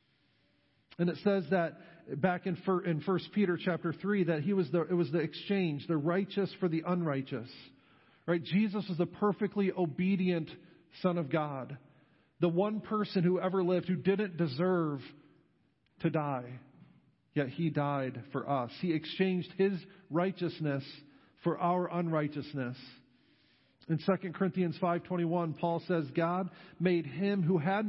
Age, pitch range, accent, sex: 50-69, 150-185 Hz, American, male